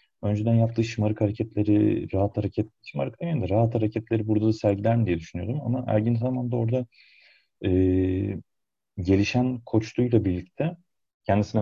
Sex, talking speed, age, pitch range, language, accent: male, 130 wpm, 40-59, 95-125 Hz, Turkish, native